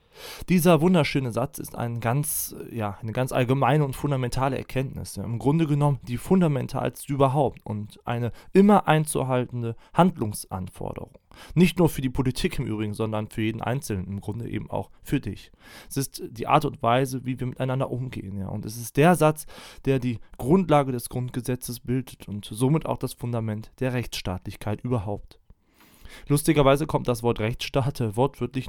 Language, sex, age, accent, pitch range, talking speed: German, male, 20-39, German, 110-145 Hz, 155 wpm